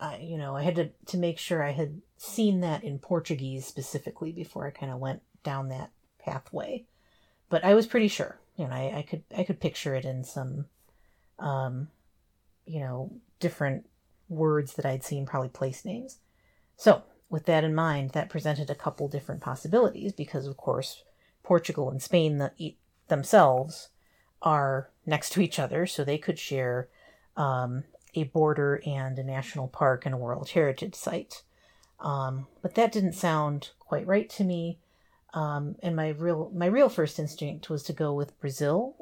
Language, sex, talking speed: English, female, 170 wpm